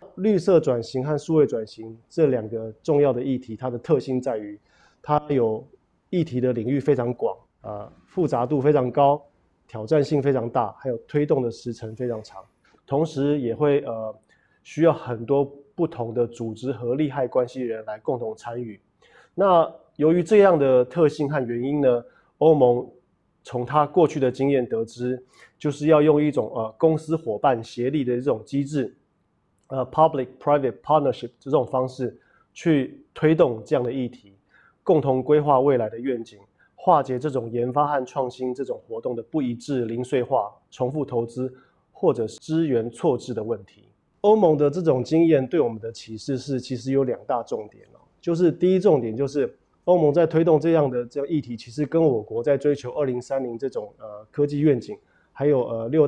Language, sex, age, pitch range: Chinese, male, 20-39, 120-150 Hz